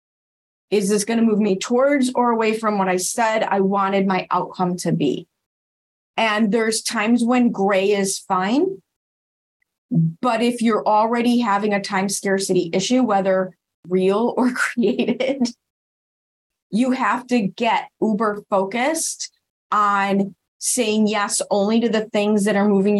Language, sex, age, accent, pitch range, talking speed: English, female, 30-49, American, 185-220 Hz, 145 wpm